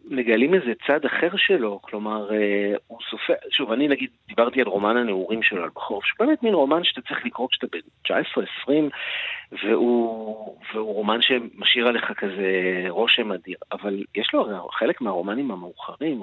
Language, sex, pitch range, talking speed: Hebrew, male, 105-135 Hz, 165 wpm